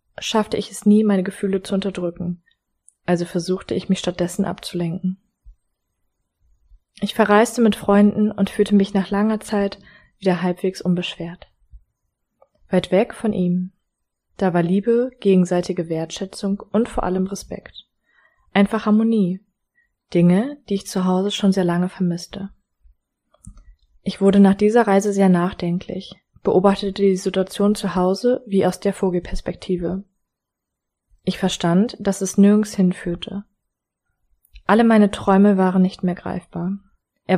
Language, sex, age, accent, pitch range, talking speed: German, female, 20-39, German, 180-205 Hz, 130 wpm